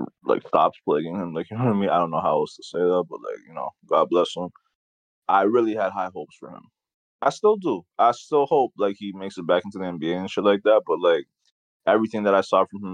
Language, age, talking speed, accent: English, 20-39, 270 wpm, American